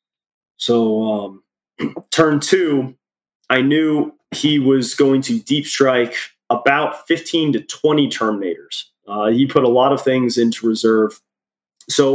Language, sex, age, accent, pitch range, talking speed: English, male, 20-39, American, 120-145 Hz, 135 wpm